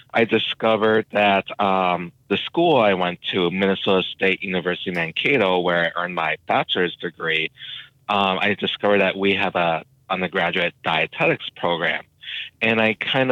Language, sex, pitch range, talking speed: English, male, 95-115 Hz, 145 wpm